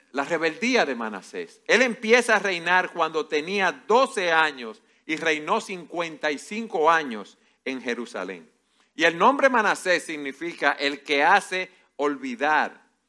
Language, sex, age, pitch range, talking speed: Spanish, male, 50-69, 145-215 Hz, 125 wpm